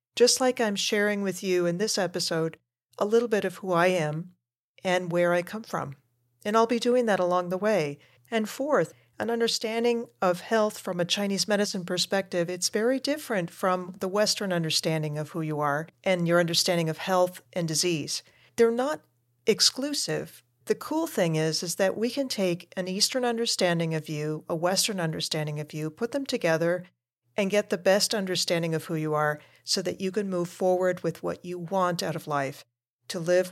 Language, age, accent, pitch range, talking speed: English, 40-59, American, 160-200 Hz, 190 wpm